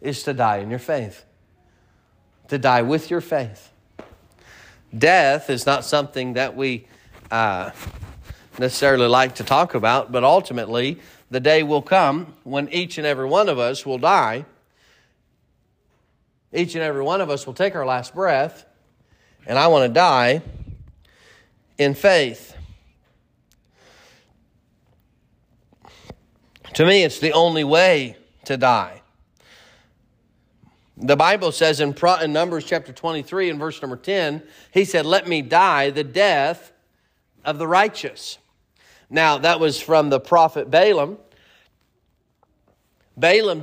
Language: English